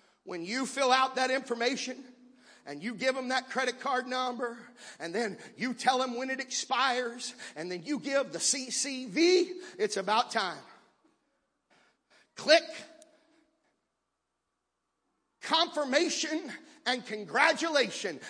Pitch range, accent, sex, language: 215-275 Hz, American, male, English